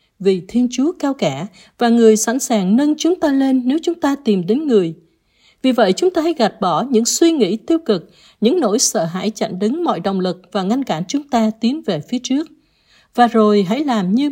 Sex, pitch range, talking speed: female, 200-265 Hz, 225 wpm